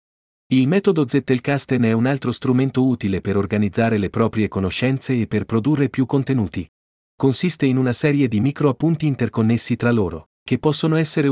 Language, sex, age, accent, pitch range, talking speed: Italian, male, 40-59, native, 110-140 Hz, 165 wpm